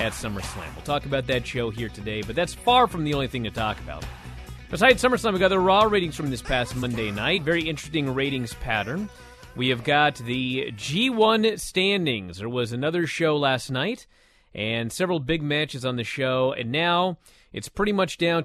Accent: American